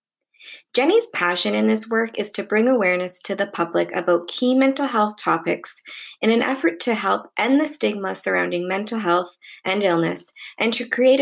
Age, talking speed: 20-39, 175 wpm